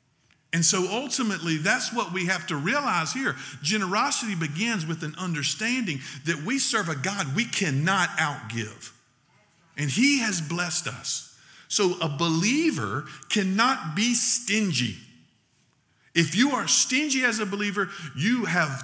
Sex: male